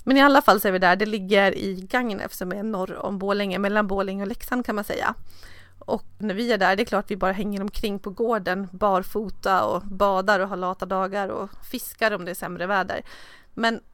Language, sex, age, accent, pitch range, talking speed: Swedish, female, 30-49, native, 190-220 Hz, 235 wpm